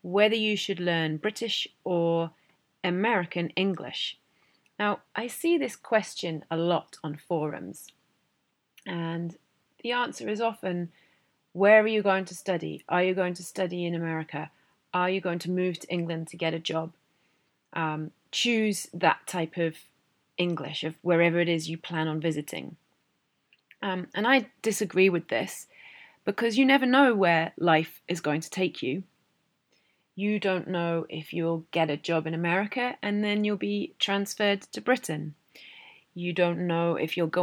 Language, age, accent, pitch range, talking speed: English, 30-49, British, 165-210 Hz, 160 wpm